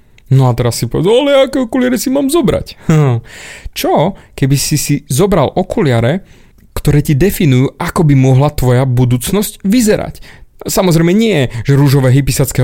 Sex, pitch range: male, 130-180 Hz